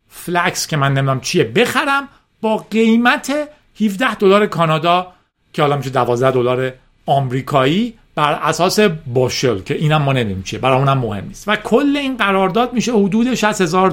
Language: Persian